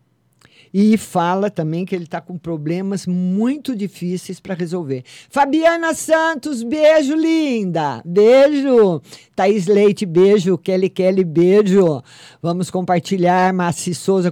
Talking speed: 115 wpm